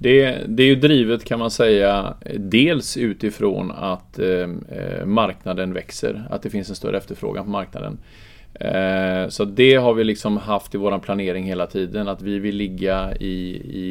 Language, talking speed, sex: Swedish, 165 wpm, male